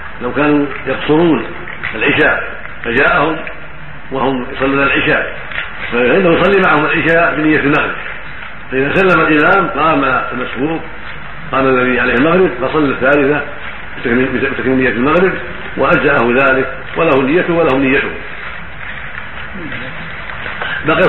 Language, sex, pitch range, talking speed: Arabic, male, 135-160 Hz, 100 wpm